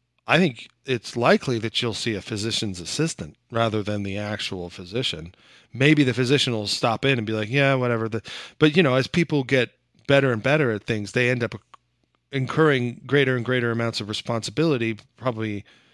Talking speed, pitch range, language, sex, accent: 180 wpm, 105-130 Hz, English, male, American